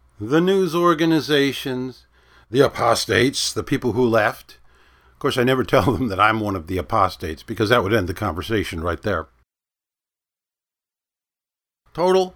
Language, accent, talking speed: English, American, 145 wpm